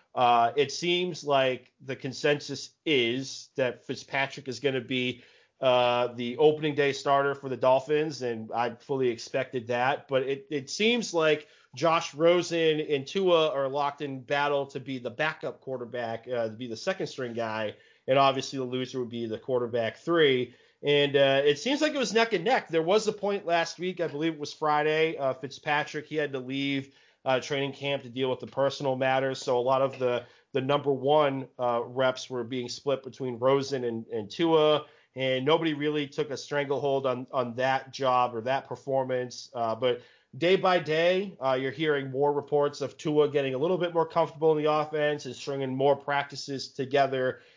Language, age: English, 30-49